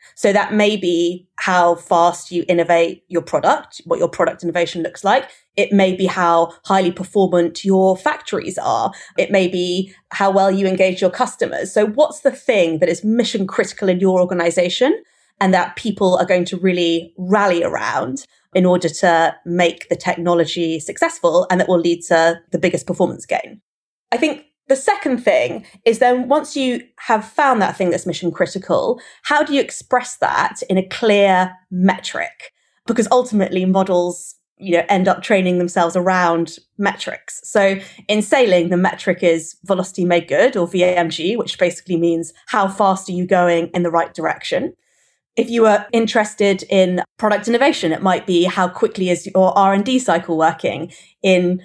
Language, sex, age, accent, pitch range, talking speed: English, female, 20-39, British, 175-215 Hz, 170 wpm